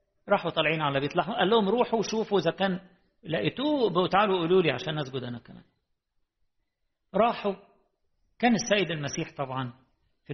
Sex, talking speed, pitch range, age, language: male, 145 wpm, 140-195 Hz, 50-69, English